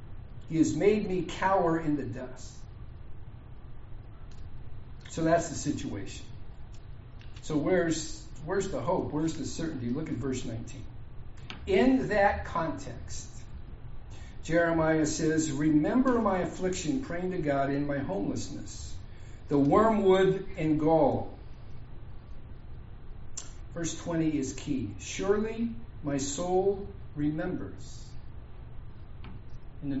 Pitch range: 115-195 Hz